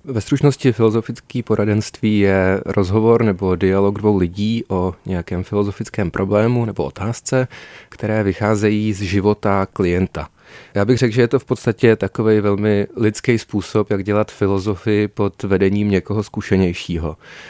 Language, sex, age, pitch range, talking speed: Czech, male, 30-49, 100-120 Hz, 135 wpm